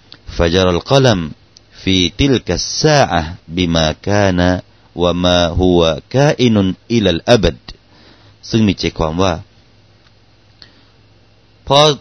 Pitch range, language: 95-120 Hz, Thai